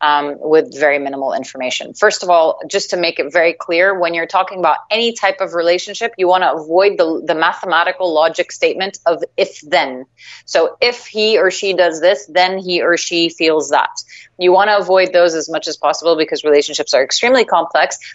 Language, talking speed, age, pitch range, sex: English, 200 wpm, 30-49, 160-200 Hz, female